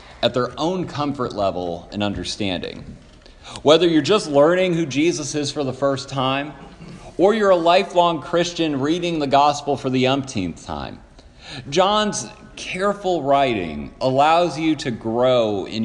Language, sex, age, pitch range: English, male, 40-59, 110-175 Hz